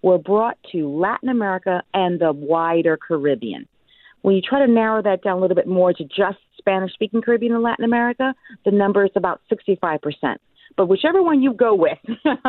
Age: 40-59